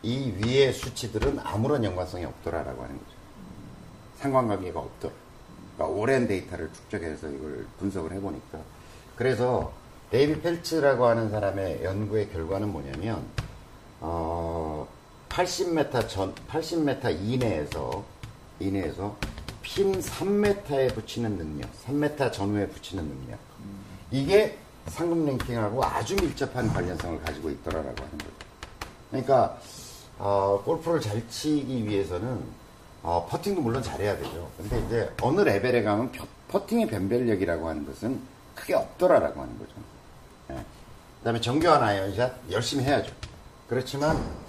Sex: male